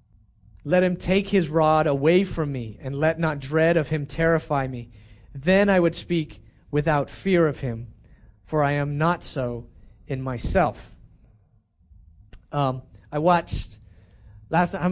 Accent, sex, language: American, male, English